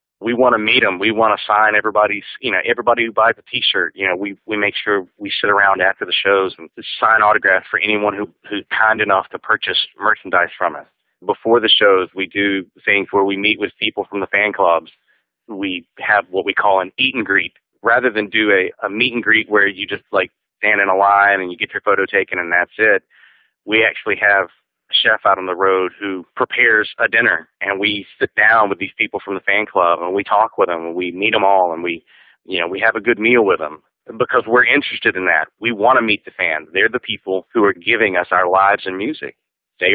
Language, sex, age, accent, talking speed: English, male, 30-49, American, 240 wpm